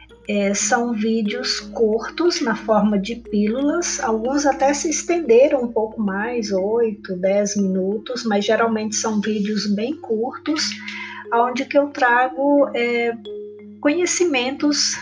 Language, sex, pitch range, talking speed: Portuguese, female, 215-265 Hz, 110 wpm